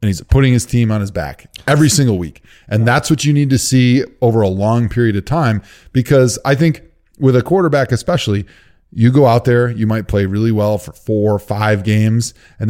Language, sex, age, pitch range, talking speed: English, male, 20-39, 105-135 Hz, 215 wpm